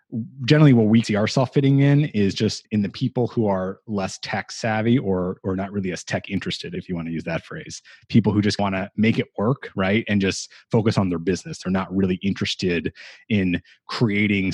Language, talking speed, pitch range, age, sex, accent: English, 215 wpm, 95-120 Hz, 30-49, male, American